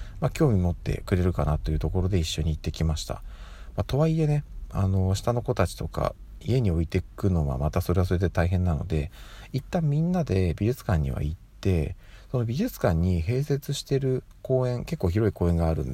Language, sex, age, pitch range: Japanese, male, 40-59, 85-115 Hz